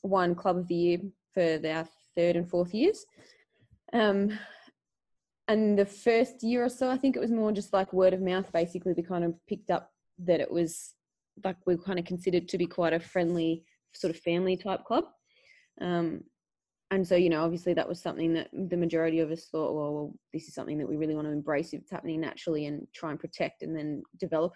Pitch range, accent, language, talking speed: 165-190 Hz, Australian, English, 215 wpm